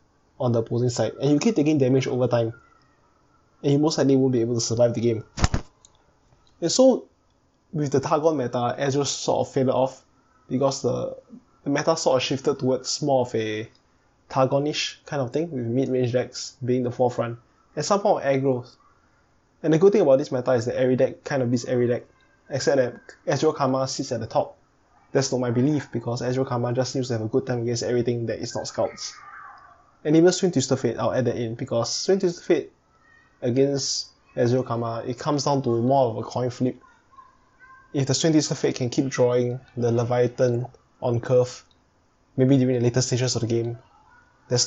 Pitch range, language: 120-140 Hz, English